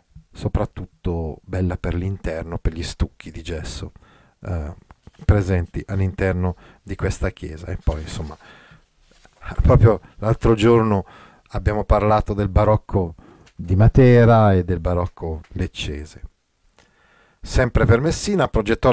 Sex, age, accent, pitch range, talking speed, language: male, 40-59, native, 90-120 Hz, 110 wpm, Italian